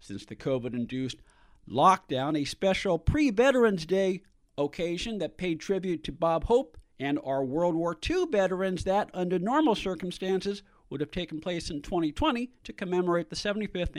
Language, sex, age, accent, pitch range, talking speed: English, male, 50-69, American, 135-195 Hz, 150 wpm